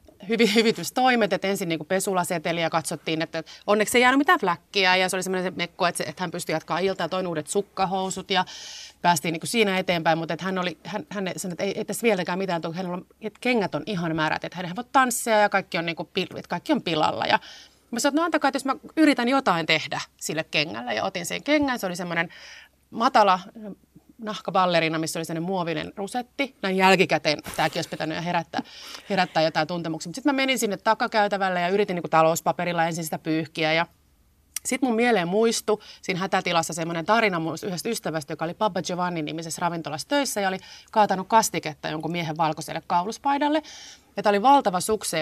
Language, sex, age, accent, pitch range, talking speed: Finnish, female, 30-49, native, 165-215 Hz, 190 wpm